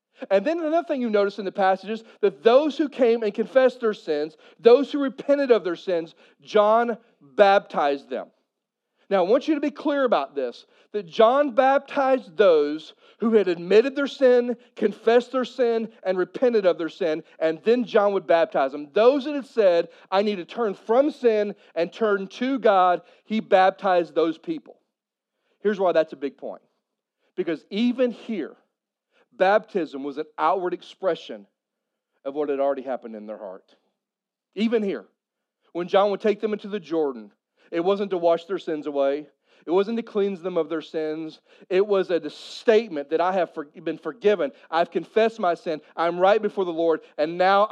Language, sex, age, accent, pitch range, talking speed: English, male, 40-59, American, 165-240 Hz, 180 wpm